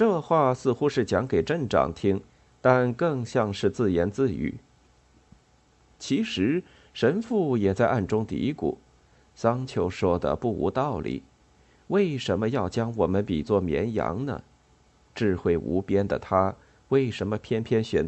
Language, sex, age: Chinese, male, 50-69